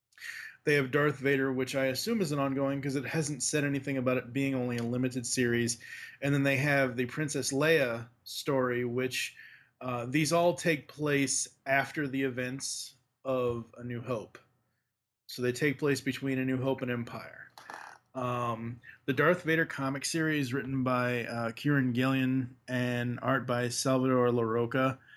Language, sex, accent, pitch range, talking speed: English, male, American, 125-140 Hz, 165 wpm